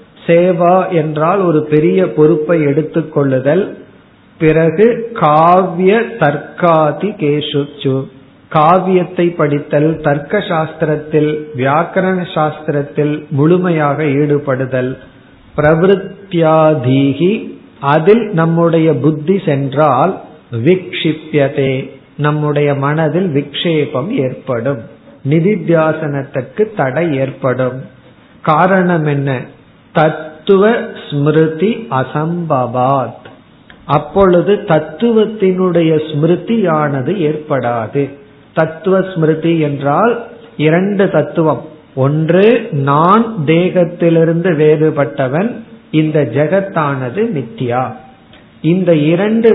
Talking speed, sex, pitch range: 65 wpm, male, 150-185 Hz